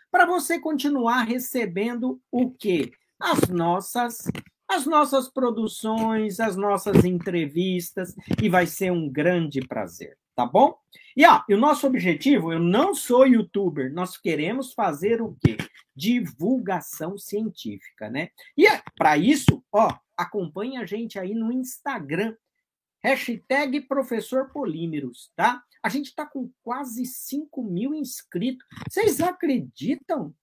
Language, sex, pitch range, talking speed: Portuguese, male, 195-275 Hz, 125 wpm